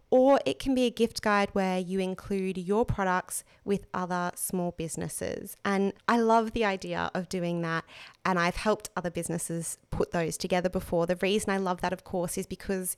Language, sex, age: English, female, 20-39